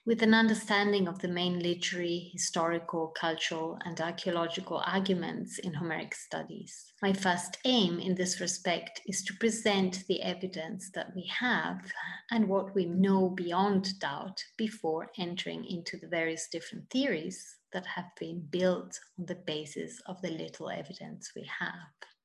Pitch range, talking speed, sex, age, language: 175-210 Hz, 150 wpm, female, 30-49, English